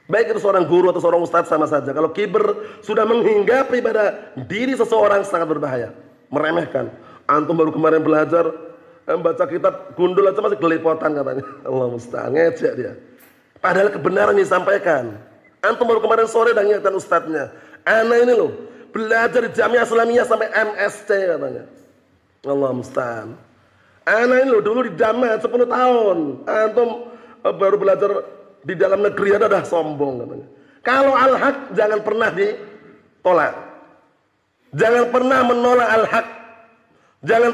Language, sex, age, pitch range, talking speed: Indonesian, male, 30-49, 170-240 Hz, 130 wpm